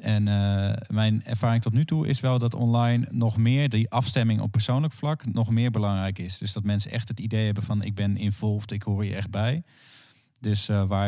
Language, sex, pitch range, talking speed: Dutch, male, 105-120 Hz, 220 wpm